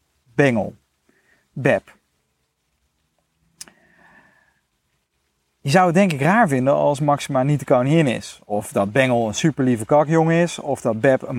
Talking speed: 135 wpm